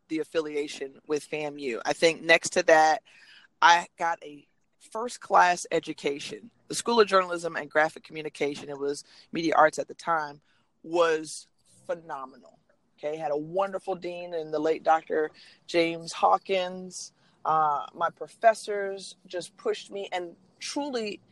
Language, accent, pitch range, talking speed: English, American, 155-190 Hz, 140 wpm